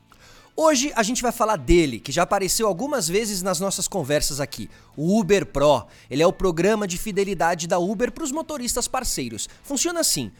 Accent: Brazilian